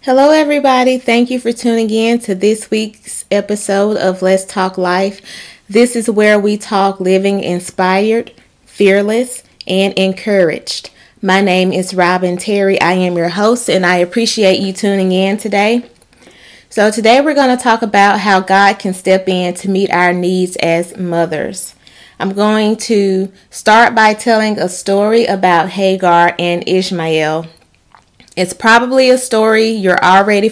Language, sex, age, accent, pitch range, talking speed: English, female, 30-49, American, 185-220 Hz, 150 wpm